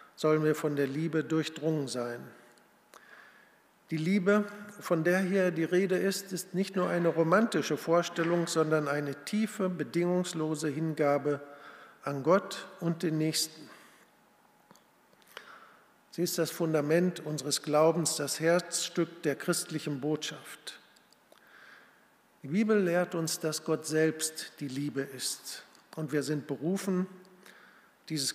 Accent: German